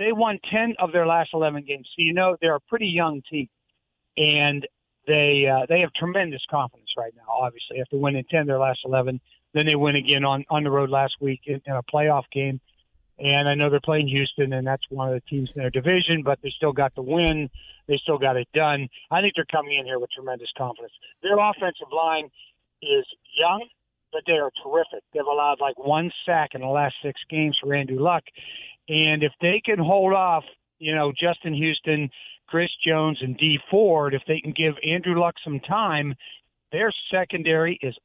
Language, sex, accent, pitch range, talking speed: English, male, American, 140-170 Hz, 210 wpm